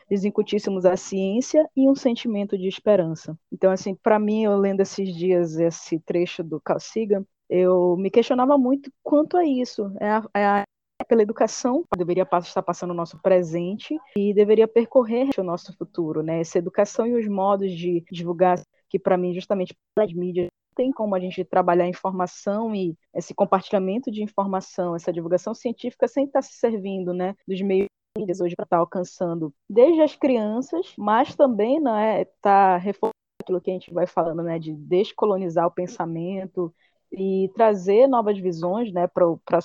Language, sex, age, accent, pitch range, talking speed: Portuguese, female, 20-39, Brazilian, 180-225 Hz, 170 wpm